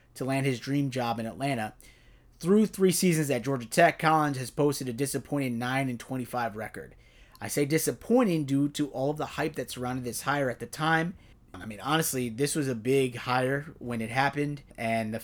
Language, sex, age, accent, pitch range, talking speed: English, male, 30-49, American, 120-150 Hz, 195 wpm